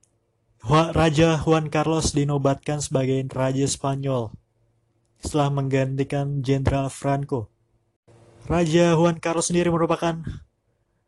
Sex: male